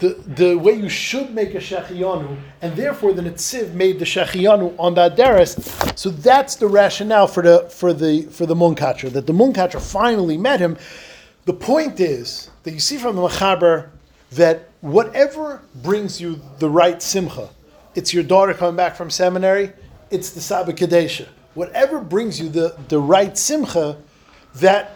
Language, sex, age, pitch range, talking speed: English, male, 50-69, 165-205 Hz, 165 wpm